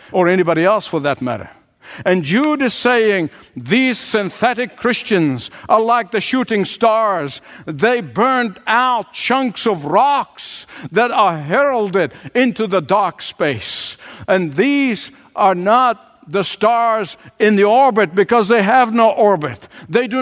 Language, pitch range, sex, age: English, 185-245 Hz, male, 60-79